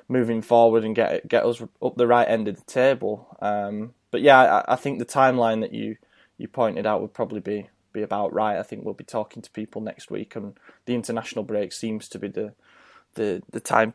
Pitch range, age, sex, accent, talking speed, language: 105-120 Hz, 10-29, male, British, 225 wpm, English